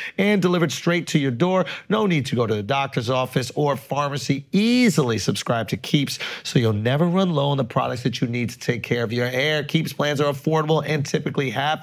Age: 40-59